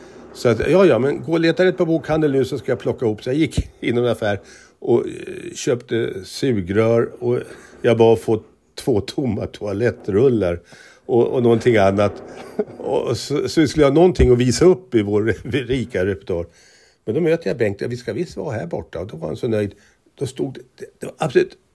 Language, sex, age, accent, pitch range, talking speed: Swedish, male, 60-79, native, 105-155 Hz, 200 wpm